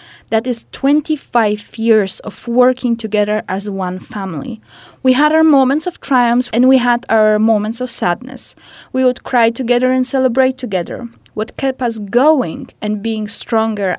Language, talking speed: English, 160 wpm